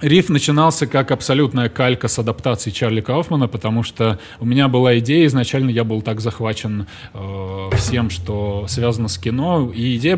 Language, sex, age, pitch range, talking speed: Russian, male, 20-39, 120-155 Hz, 165 wpm